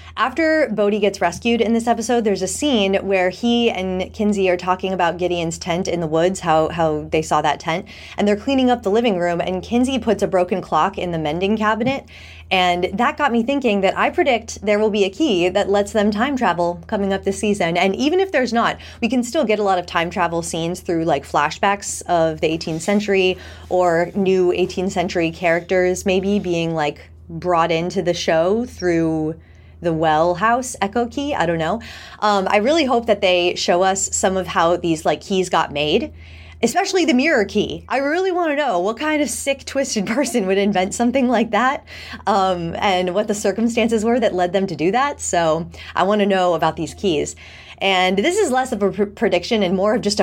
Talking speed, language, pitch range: 210 wpm, English, 175-230 Hz